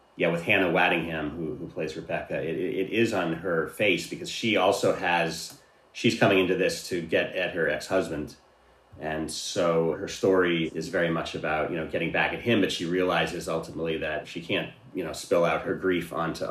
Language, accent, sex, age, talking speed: English, American, male, 30-49, 200 wpm